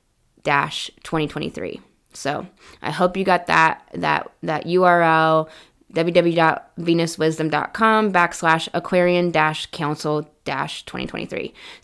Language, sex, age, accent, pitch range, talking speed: English, female, 20-39, American, 160-195 Hz, 90 wpm